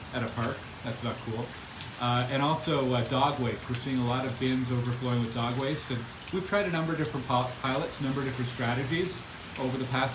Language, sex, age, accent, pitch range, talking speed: English, male, 40-59, American, 120-135 Hz, 230 wpm